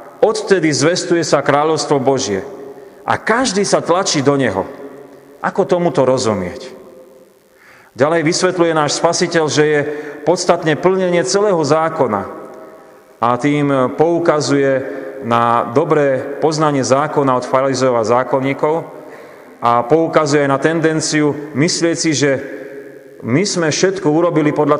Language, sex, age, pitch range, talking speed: Slovak, male, 30-49, 135-170 Hz, 110 wpm